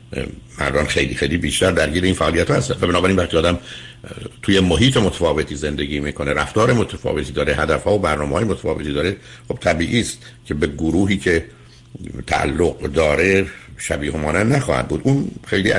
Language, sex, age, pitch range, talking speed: Persian, male, 60-79, 75-110 Hz, 155 wpm